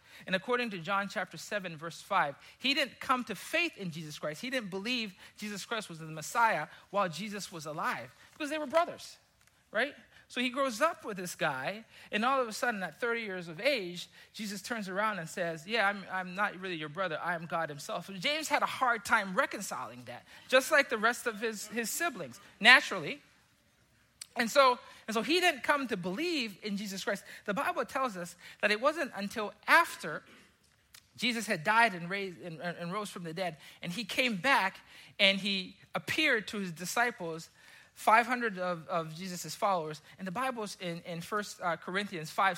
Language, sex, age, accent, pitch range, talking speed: English, male, 40-59, American, 180-245 Hz, 195 wpm